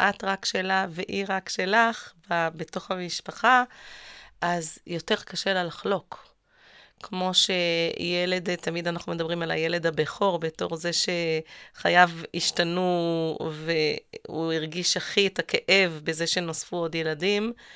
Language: Hebrew